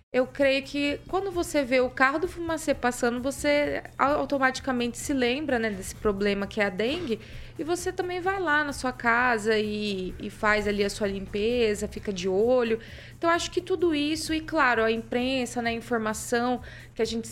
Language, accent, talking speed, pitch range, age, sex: Portuguese, Brazilian, 190 wpm, 210-250 Hz, 20-39, female